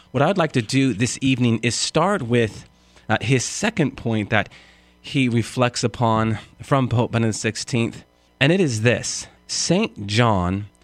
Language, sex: English, male